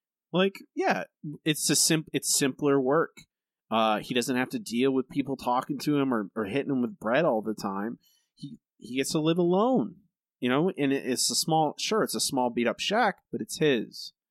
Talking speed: 210 wpm